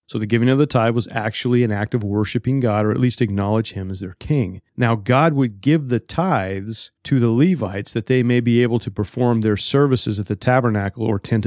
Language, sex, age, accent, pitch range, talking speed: English, male, 40-59, American, 105-125 Hz, 230 wpm